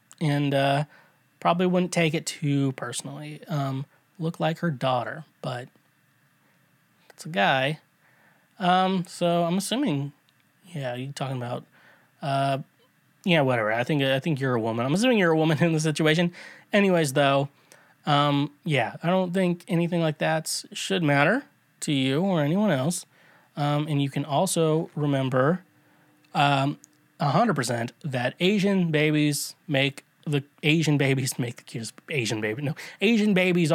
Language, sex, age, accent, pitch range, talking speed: English, male, 20-39, American, 140-185 Hz, 150 wpm